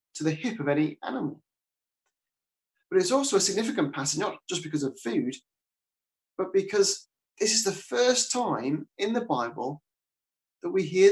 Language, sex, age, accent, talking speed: English, male, 30-49, British, 155 wpm